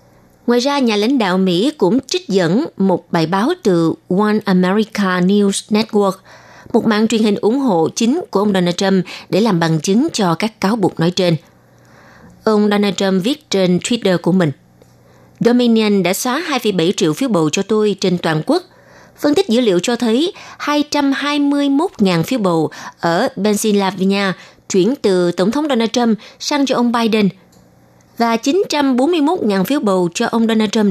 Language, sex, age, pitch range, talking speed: Vietnamese, female, 20-39, 180-240 Hz, 170 wpm